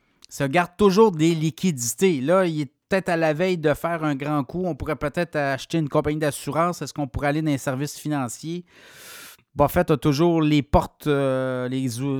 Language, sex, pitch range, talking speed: French, male, 130-165 Hz, 185 wpm